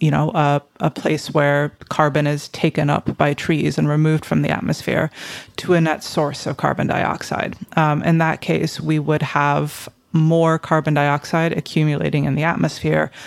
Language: English